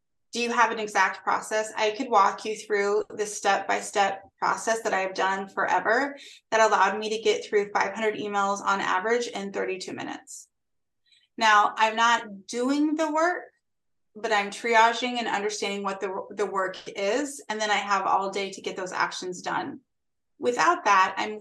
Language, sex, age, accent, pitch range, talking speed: English, female, 20-39, American, 200-235 Hz, 170 wpm